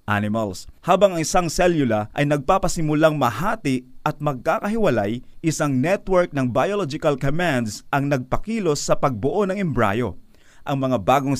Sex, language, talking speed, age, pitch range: male, Filipino, 125 wpm, 30-49, 130-175 Hz